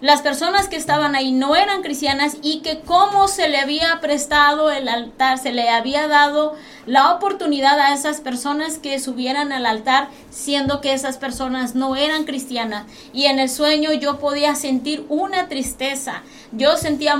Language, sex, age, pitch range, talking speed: Spanish, female, 30-49, 260-295 Hz, 165 wpm